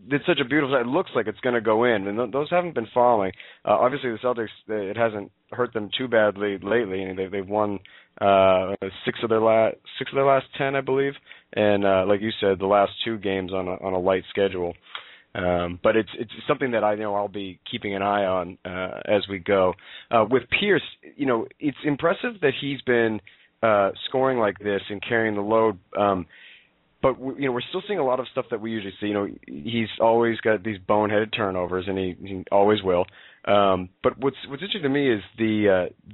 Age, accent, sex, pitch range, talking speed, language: 30-49, American, male, 100-125 Hz, 225 wpm, English